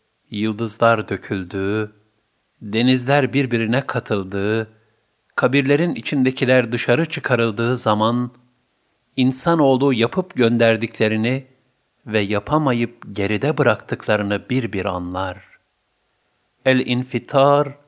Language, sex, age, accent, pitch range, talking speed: Turkish, male, 50-69, native, 105-130 Hz, 70 wpm